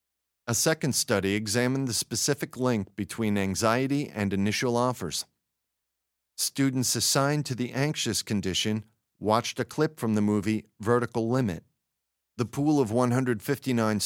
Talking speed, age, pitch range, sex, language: 130 wpm, 40-59, 105-130 Hz, male, English